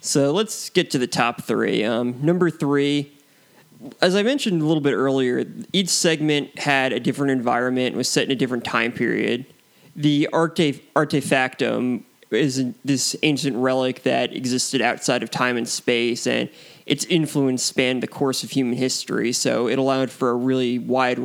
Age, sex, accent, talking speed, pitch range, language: 20-39, male, American, 170 wpm, 125-145 Hz, English